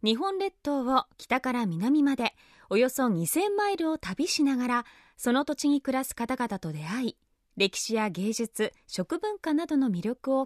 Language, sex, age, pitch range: Japanese, female, 20-39, 235-320 Hz